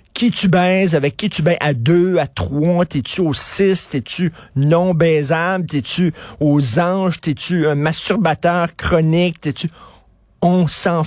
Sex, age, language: male, 50-69, French